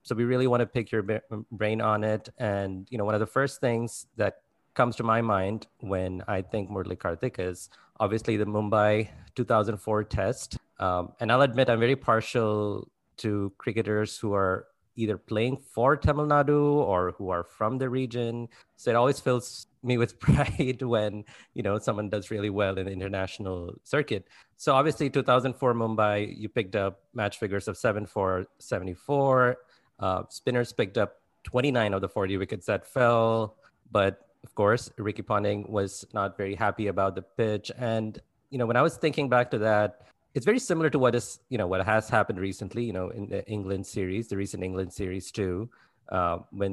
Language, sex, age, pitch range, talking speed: English, male, 30-49, 100-120 Hz, 190 wpm